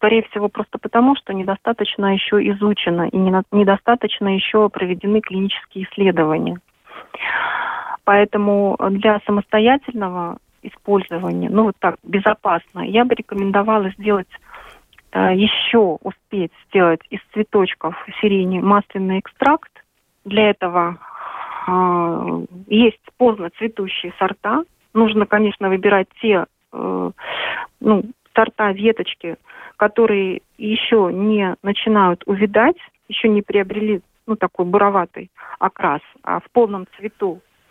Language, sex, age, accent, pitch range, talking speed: Russian, female, 30-49, native, 185-220 Hz, 100 wpm